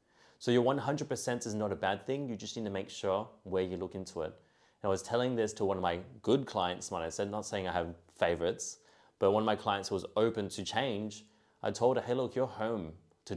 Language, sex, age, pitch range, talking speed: English, male, 30-49, 95-110 Hz, 250 wpm